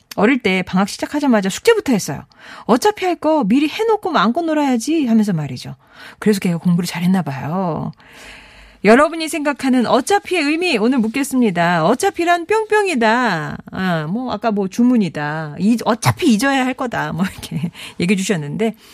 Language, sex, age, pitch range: Korean, female, 40-59, 195-290 Hz